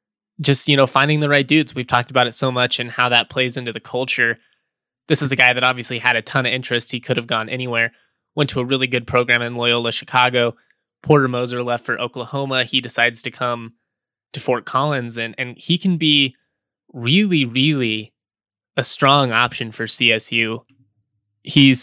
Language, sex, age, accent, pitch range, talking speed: English, male, 20-39, American, 120-145 Hz, 190 wpm